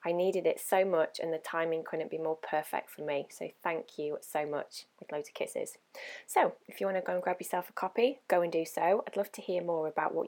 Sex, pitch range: female, 160-215 Hz